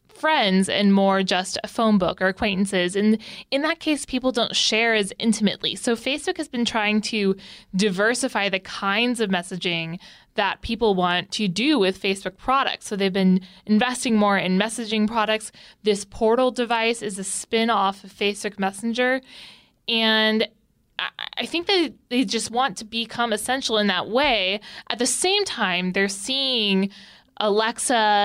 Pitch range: 195-235 Hz